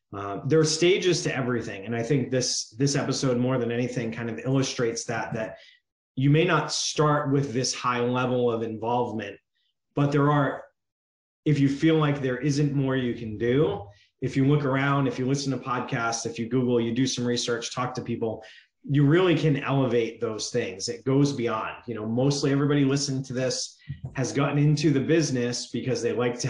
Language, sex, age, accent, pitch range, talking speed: English, male, 30-49, American, 120-140 Hz, 195 wpm